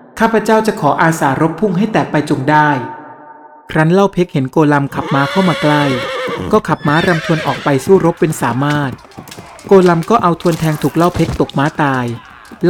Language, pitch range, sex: Thai, 135-180 Hz, male